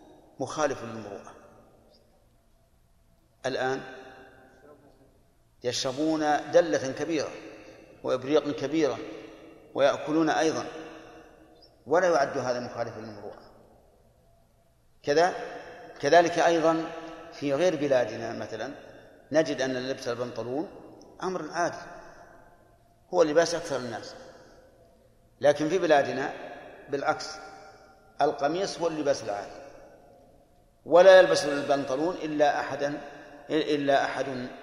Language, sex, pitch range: Arabic, male, 130-155 Hz